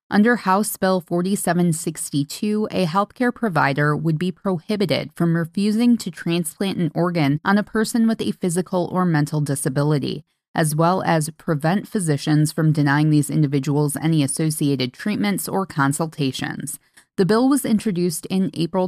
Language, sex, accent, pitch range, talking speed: English, female, American, 155-195 Hz, 145 wpm